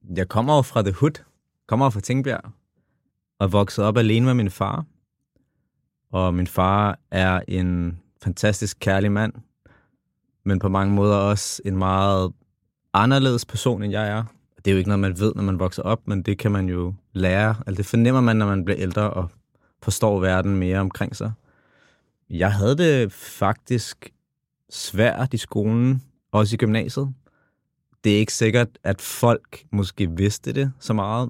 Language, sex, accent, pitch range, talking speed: Danish, male, native, 95-115 Hz, 170 wpm